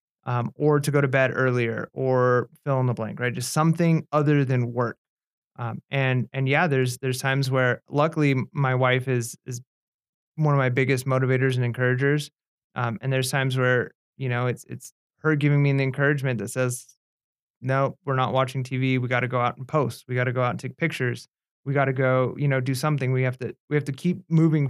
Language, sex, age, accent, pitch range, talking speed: English, male, 30-49, American, 125-140 Hz, 220 wpm